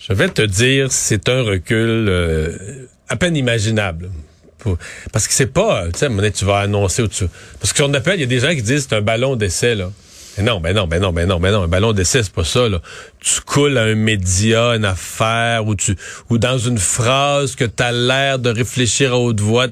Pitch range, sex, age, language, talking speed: 110-145 Hz, male, 40-59, French, 250 wpm